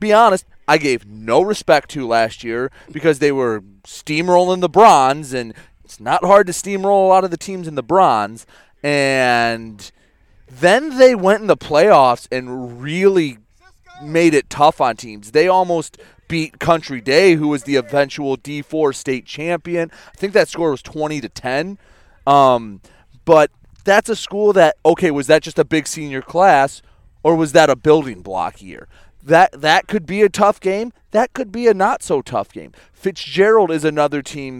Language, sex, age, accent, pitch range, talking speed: English, male, 30-49, American, 125-175 Hz, 175 wpm